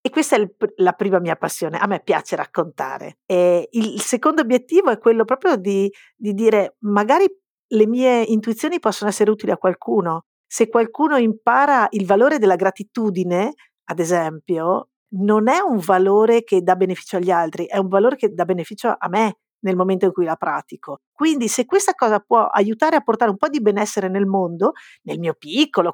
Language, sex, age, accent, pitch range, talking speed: Italian, female, 50-69, native, 185-245 Hz, 180 wpm